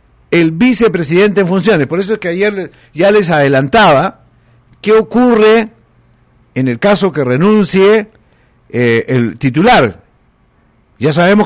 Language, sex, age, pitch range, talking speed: Spanish, male, 50-69, 135-205 Hz, 125 wpm